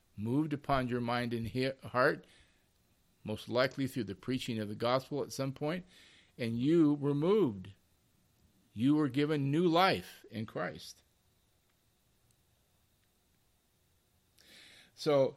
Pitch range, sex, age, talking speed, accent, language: 100-135 Hz, male, 50-69, 115 wpm, American, English